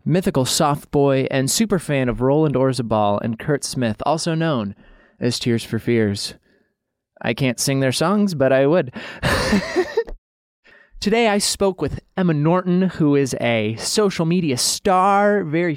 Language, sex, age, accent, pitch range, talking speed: English, male, 20-39, American, 125-175 Hz, 150 wpm